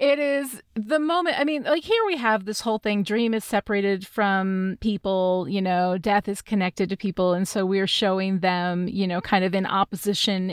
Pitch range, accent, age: 195-255 Hz, American, 30-49